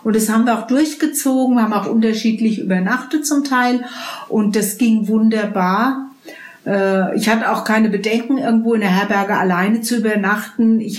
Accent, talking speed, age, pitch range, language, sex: German, 165 wpm, 50-69, 195-225 Hz, German, female